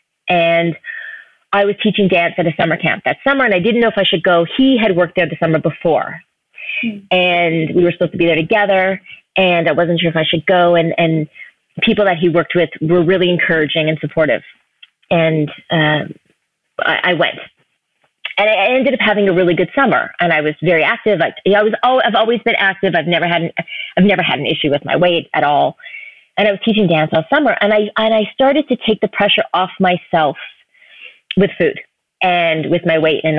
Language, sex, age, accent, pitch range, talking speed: English, female, 30-49, American, 165-205 Hz, 215 wpm